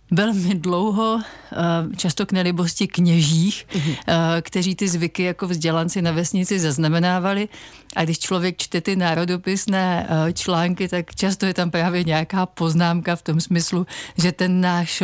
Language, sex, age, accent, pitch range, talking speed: Czech, female, 40-59, native, 160-190 Hz, 135 wpm